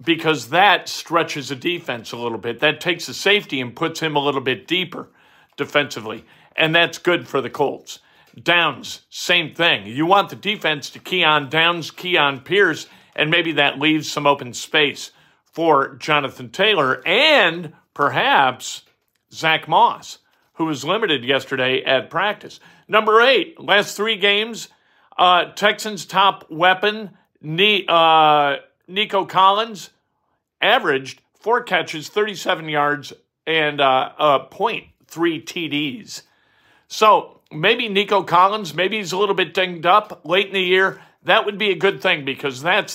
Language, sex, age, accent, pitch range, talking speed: English, male, 50-69, American, 145-195 Hz, 145 wpm